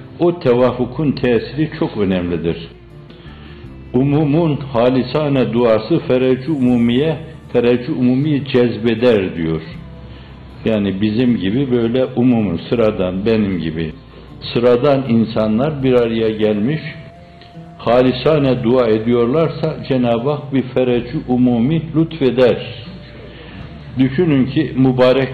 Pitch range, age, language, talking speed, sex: 105-130 Hz, 60-79, Turkish, 90 wpm, male